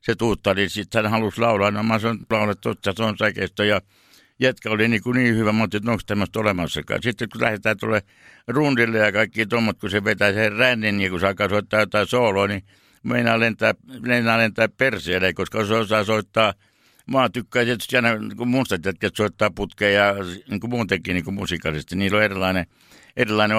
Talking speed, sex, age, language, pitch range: 180 wpm, male, 60-79, Finnish, 95-110 Hz